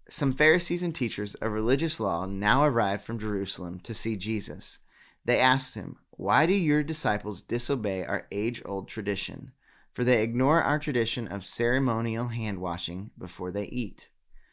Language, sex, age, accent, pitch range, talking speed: English, male, 30-49, American, 105-130 Hz, 155 wpm